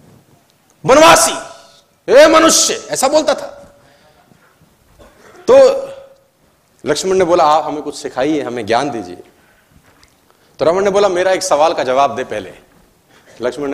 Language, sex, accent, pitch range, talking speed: Hindi, male, native, 190-295 Hz, 120 wpm